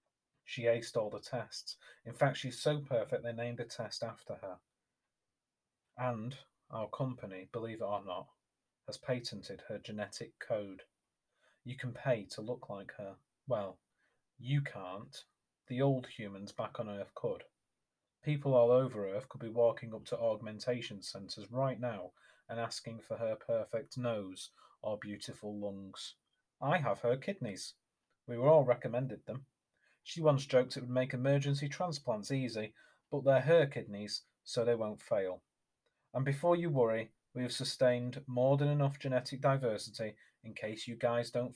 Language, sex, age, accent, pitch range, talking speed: English, male, 30-49, British, 110-135 Hz, 160 wpm